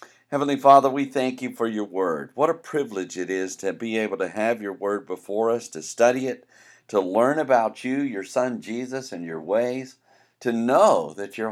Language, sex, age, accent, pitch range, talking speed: English, male, 50-69, American, 100-135 Hz, 205 wpm